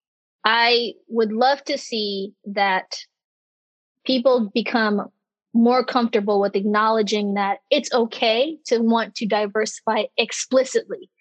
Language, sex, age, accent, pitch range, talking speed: English, female, 20-39, American, 220-260 Hz, 105 wpm